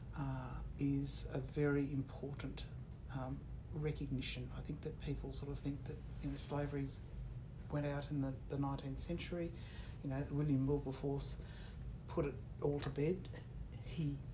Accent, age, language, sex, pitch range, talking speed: Australian, 60-79, English, female, 130-145 Hz, 145 wpm